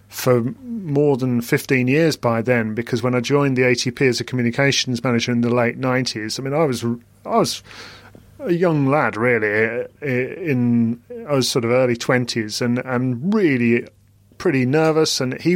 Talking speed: 175 wpm